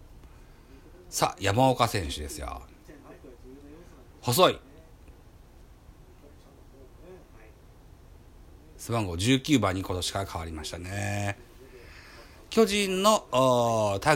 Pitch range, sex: 90-150 Hz, male